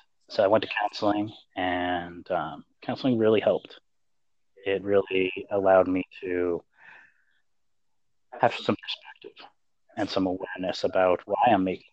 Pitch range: 95-105 Hz